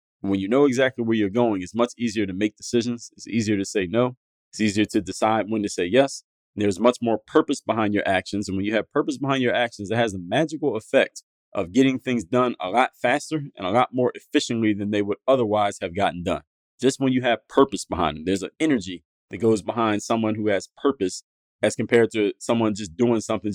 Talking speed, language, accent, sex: 225 wpm, English, American, male